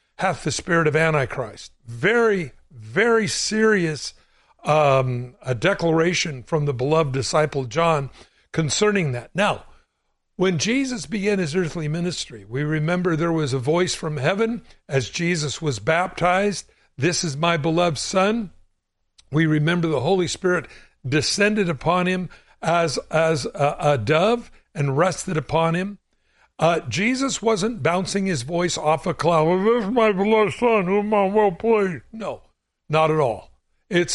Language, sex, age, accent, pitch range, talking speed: English, male, 60-79, American, 150-205 Hz, 150 wpm